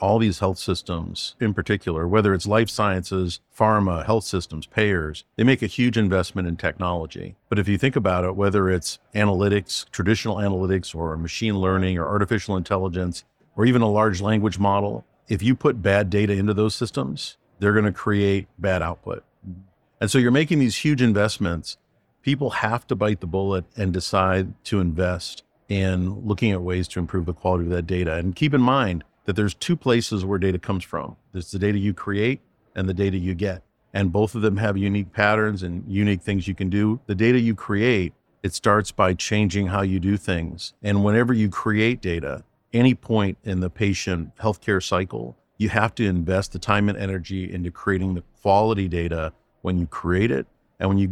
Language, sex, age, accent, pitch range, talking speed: English, male, 50-69, American, 90-110 Hz, 195 wpm